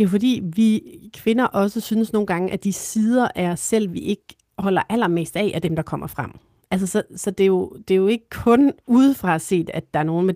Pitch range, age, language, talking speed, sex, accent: 165-210 Hz, 40-59, Danish, 245 wpm, female, native